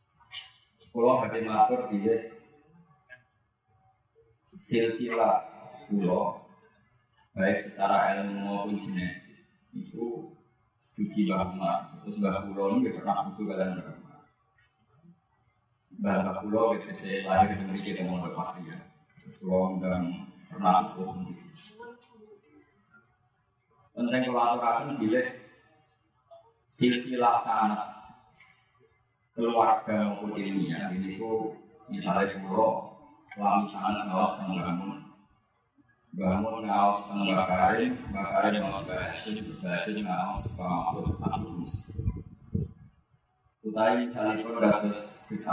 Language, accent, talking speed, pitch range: Indonesian, native, 90 wpm, 100-125 Hz